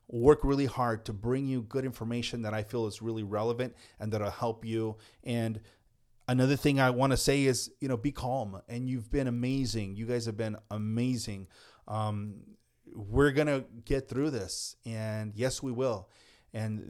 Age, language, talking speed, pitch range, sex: 30-49, English, 180 wpm, 110-130 Hz, male